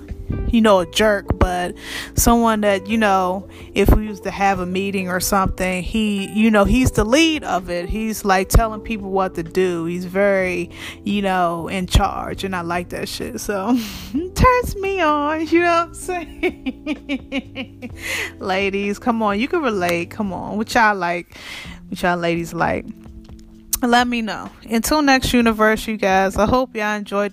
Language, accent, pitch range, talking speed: English, American, 185-220 Hz, 175 wpm